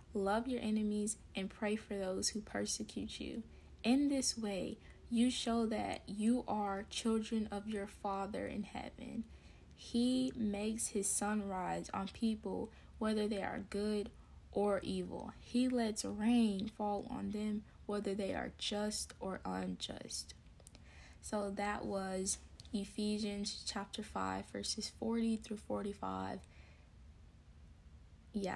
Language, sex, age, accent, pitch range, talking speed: English, female, 20-39, American, 195-235 Hz, 125 wpm